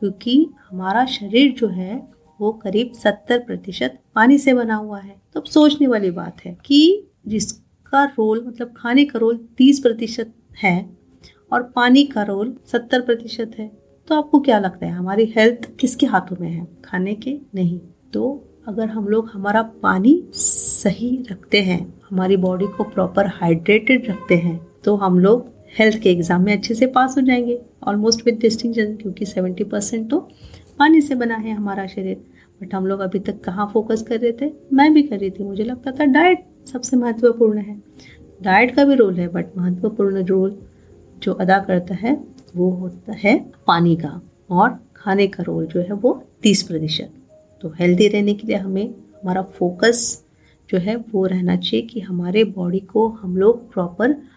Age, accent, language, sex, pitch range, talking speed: 30-49, native, Hindi, female, 190-240 Hz, 175 wpm